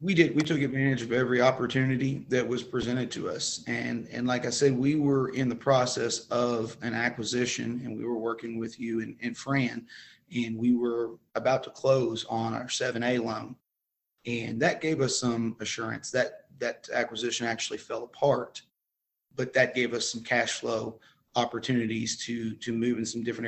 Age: 30-49